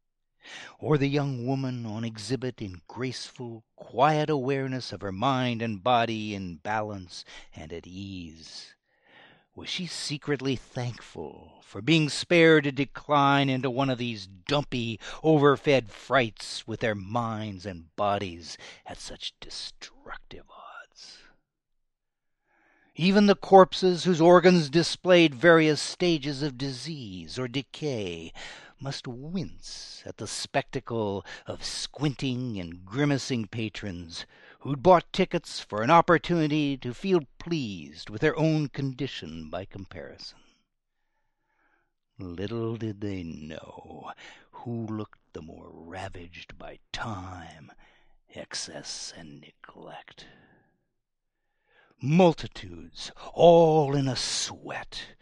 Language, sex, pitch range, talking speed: English, male, 105-150 Hz, 110 wpm